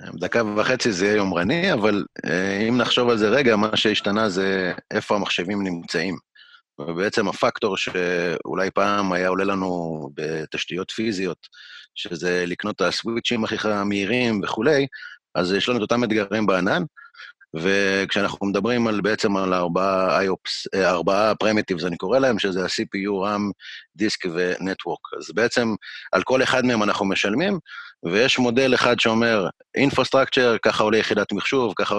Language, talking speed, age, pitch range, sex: Hebrew, 145 wpm, 30-49, 95-120 Hz, male